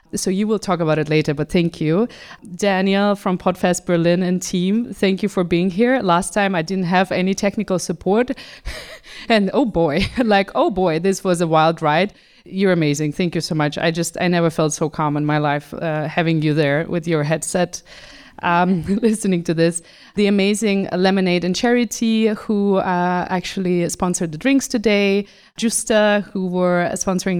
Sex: female